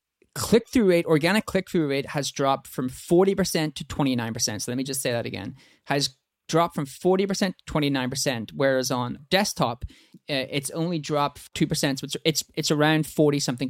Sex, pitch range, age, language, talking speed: male, 135-175 Hz, 20-39, English, 160 wpm